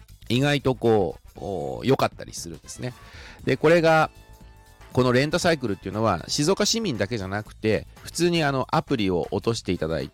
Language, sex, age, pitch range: Japanese, male, 40-59, 95-145 Hz